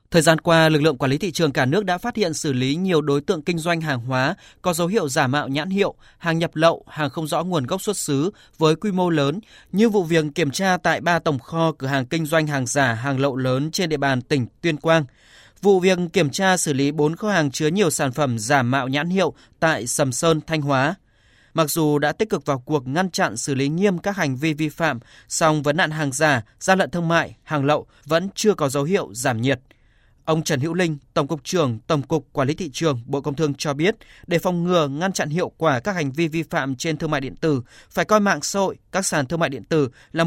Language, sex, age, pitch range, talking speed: Vietnamese, male, 20-39, 110-165 Hz, 255 wpm